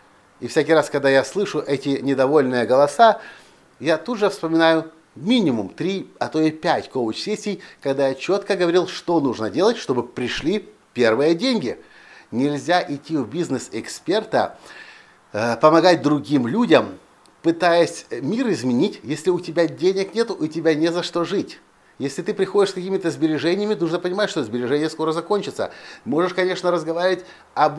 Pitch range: 150-185 Hz